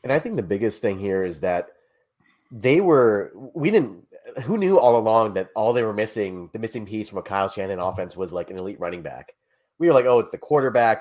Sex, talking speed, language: male, 235 wpm, English